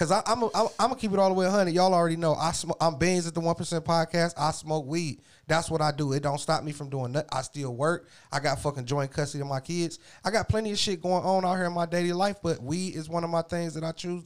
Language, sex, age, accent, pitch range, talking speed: English, male, 30-49, American, 140-175 Hz, 290 wpm